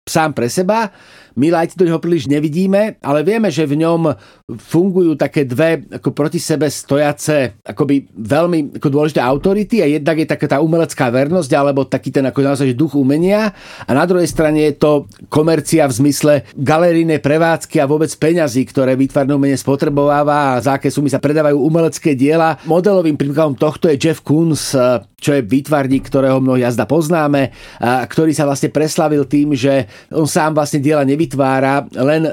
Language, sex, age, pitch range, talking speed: Slovak, male, 40-59, 140-165 Hz, 170 wpm